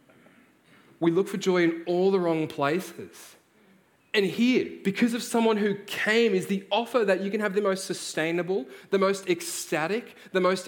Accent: Australian